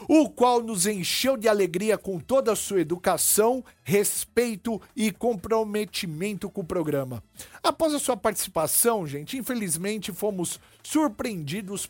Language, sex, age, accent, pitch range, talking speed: Portuguese, male, 50-69, Brazilian, 185-235 Hz, 125 wpm